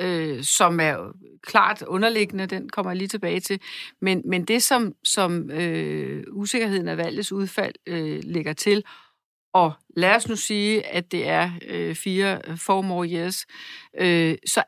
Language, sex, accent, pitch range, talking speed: Danish, female, native, 185-230 Hz, 160 wpm